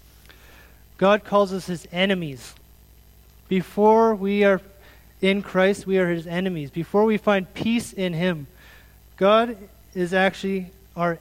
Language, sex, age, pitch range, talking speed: English, male, 30-49, 160-190 Hz, 130 wpm